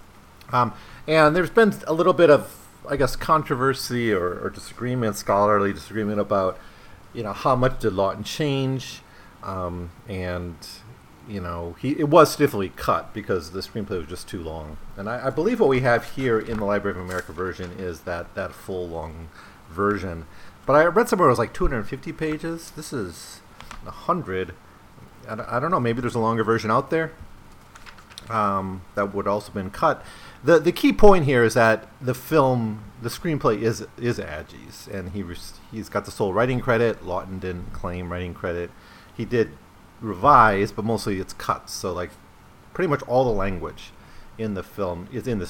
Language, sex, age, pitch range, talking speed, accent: English, male, 40-59, 90-125 Hz, 180 wpm, American